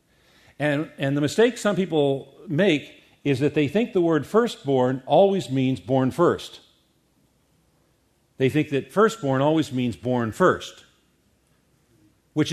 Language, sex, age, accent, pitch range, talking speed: English, male, 50-69, American, 130-160 Hz, 130 wpm